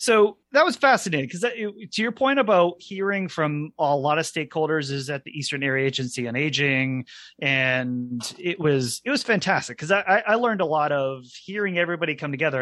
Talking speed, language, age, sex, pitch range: 190 wpm, English, 30-49, male, 130-180 Hz